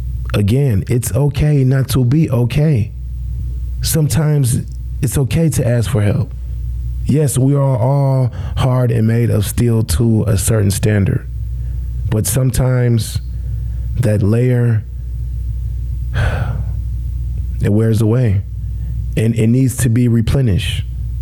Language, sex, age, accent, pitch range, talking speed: English, male, 20-39, American, 105-130 Hz, 115 wpm